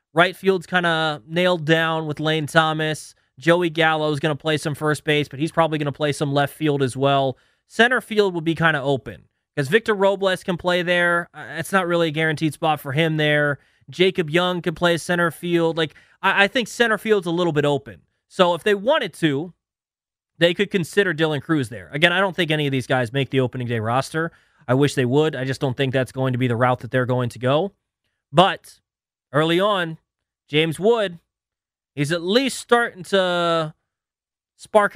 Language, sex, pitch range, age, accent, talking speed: English, male, 135-180 Hz, 20-39, American, 210 wpm